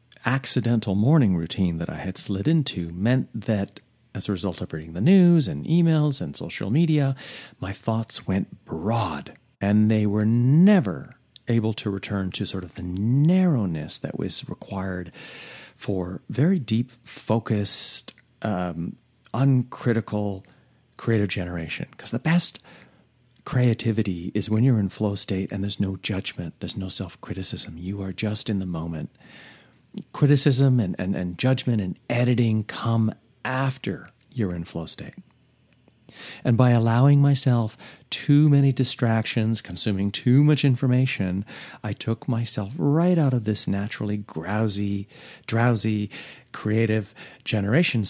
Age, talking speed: 40-59, 135 wpm